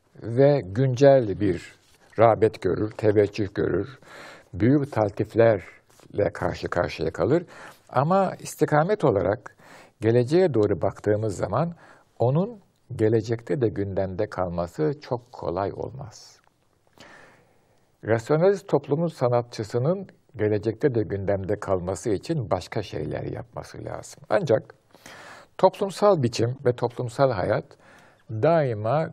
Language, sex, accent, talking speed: Turkish, male, native, 95 wpm